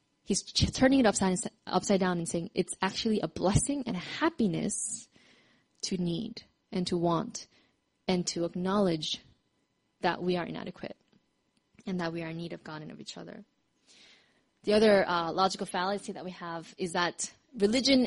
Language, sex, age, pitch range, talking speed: English, female, 20-39, 185-235 Hz, 165 wpm